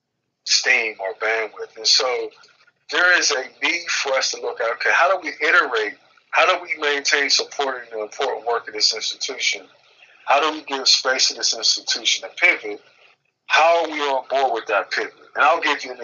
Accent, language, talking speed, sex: American, English, 200 wpm, male